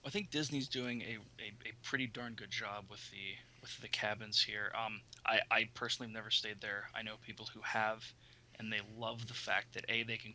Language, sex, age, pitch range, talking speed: English, male, 20-39, 110-120 Hz, 225 wpm